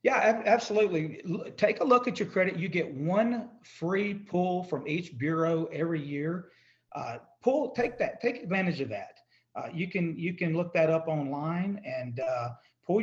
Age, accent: 40-59, American